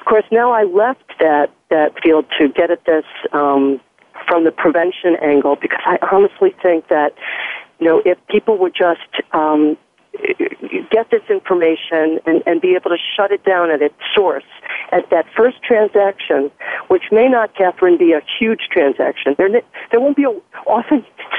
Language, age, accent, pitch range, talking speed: English, 50-69, American, 160-210 Hz, 170 wpm